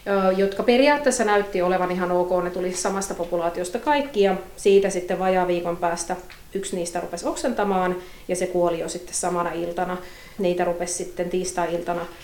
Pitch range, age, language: 175-200 Hz, 30-49, Finnish